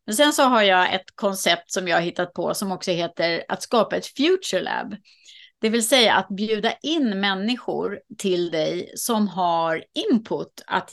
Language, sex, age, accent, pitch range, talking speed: Swedish, female, 30-49, native, 175-225 Hz, 180 wpm